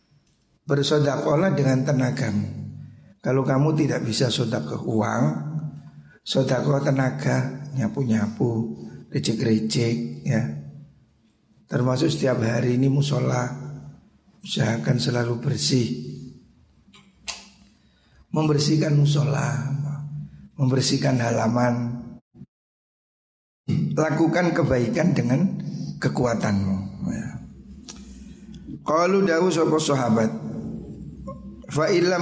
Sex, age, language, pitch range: male, 60-79, Indonesian, 115-150 Hz